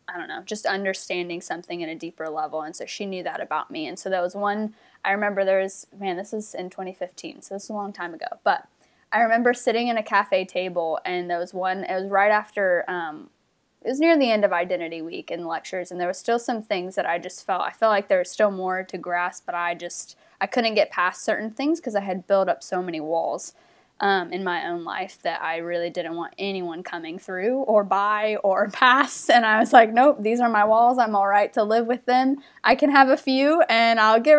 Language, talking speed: English, 250 wpm